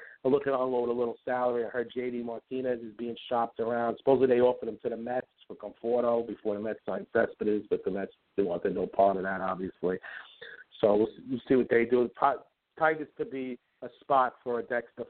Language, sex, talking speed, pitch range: English, male, 220 wpm, 115-130 Hz